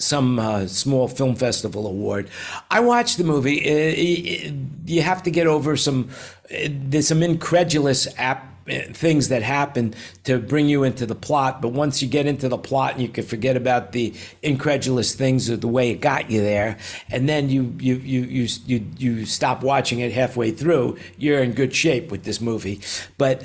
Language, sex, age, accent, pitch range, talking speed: English, male, 50-69, American, 110-145 Hz, 185 wpm